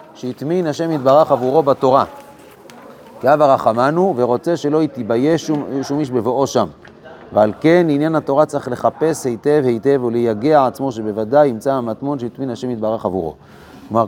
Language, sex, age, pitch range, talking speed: Hebrew, male, 30-49, 120-150 Hz, 150 wpm